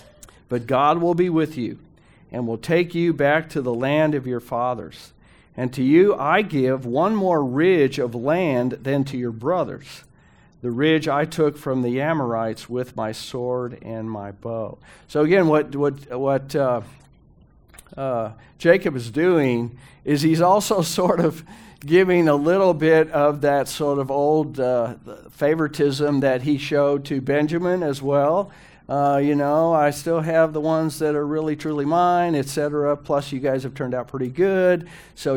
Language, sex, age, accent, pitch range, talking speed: English, male, 50-69, American, 125-155 Hz, 170 wpm